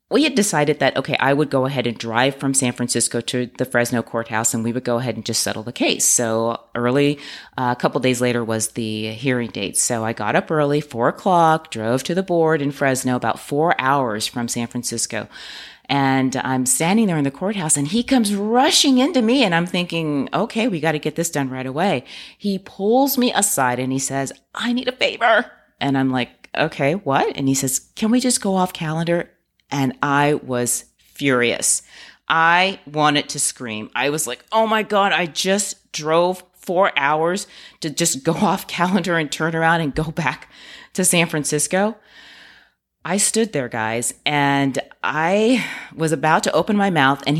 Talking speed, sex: 195 wpm, female